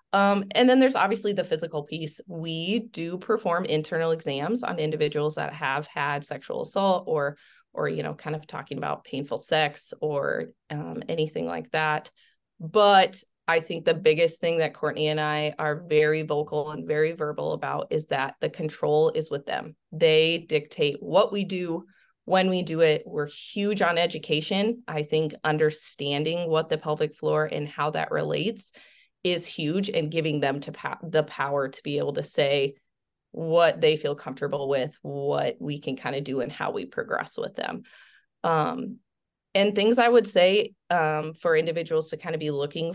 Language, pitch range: English, 150-190 Hz